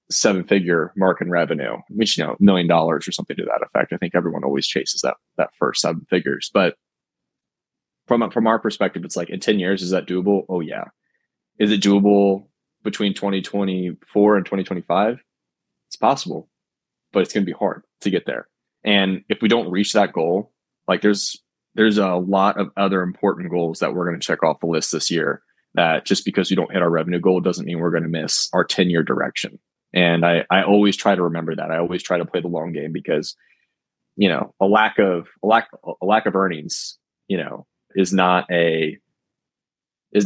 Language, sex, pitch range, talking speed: English, male, 85-100 Hz, 200 wpm